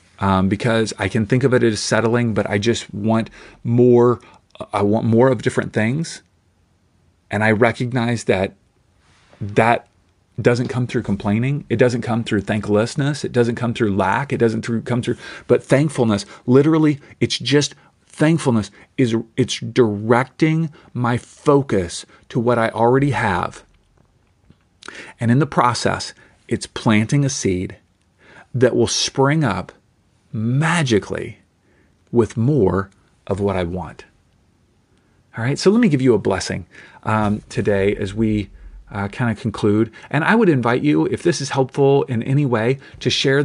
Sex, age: male, 40-59